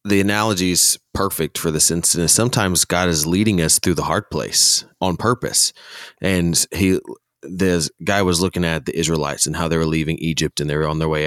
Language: English